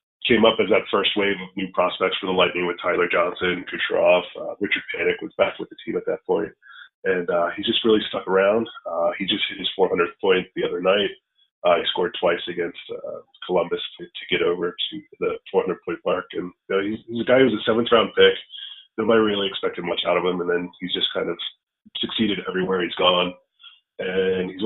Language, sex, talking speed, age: English, male, 220 wpm, 30-49